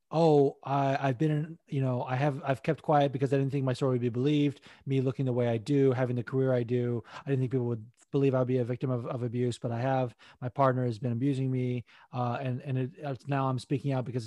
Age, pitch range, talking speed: 30-49, 130-155 Hz, 265 wpm